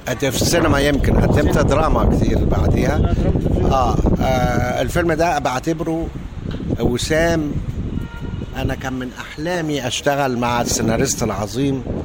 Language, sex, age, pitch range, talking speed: Arabic, male, 60-79, 120-150 Hz, 100 wpm